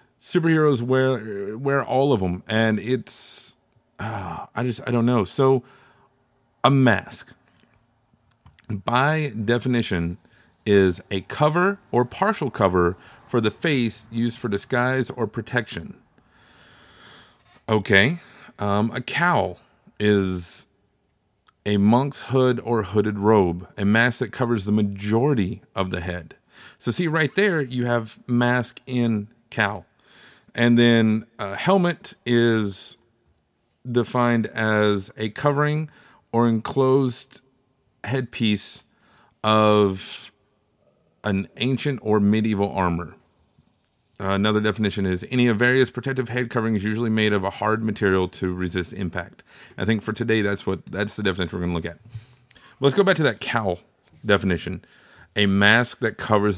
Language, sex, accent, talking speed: English, male, American, 135 wpm